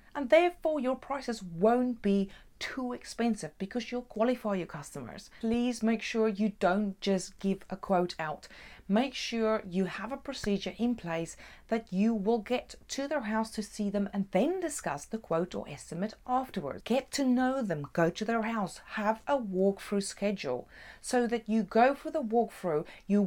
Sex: female